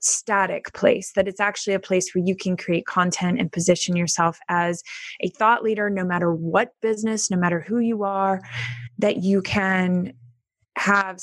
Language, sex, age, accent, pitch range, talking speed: English, female, 20-39, American, 185-220 Hz, 170 wpm